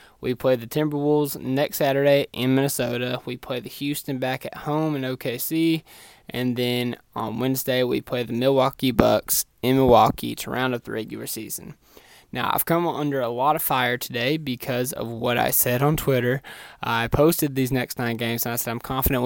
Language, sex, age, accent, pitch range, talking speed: English, male, 20-39, American, 120-145 Hz, 190 wpm